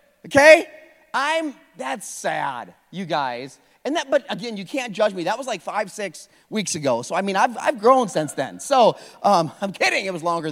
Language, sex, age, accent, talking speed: English, male, 30-49, American, 205 wpm